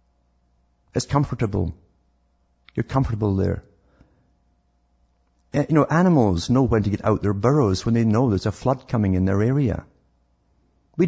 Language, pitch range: English, 75-115 Hz